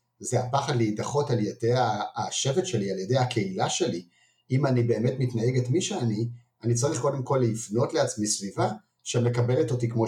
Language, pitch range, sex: Hebrew, 110-130 Hz, male